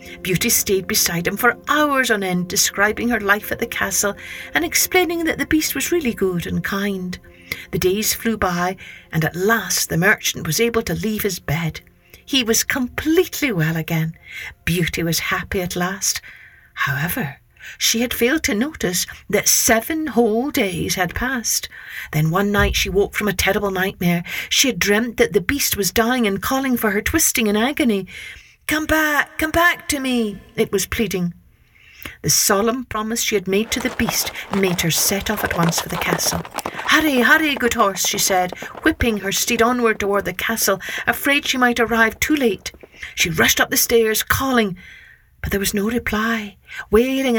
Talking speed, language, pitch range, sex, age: 180 wpm, English, 195-250 Hz, female, 60-79